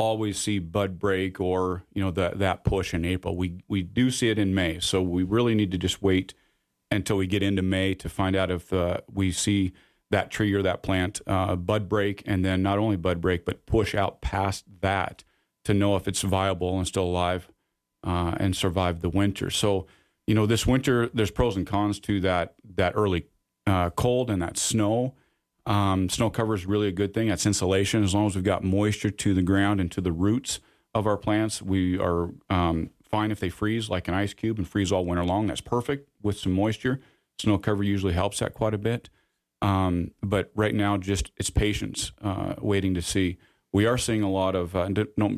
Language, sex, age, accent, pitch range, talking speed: English, male, 40-59, American, 95-105 Hz, 215 wpm